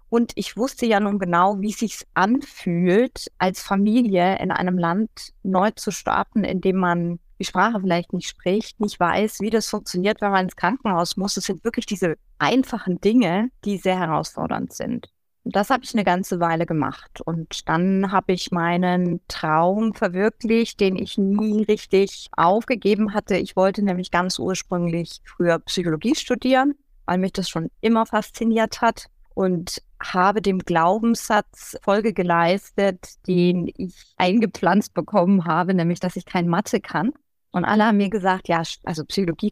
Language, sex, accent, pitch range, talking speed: German, female, German, 180-220 Hz, 160 wpm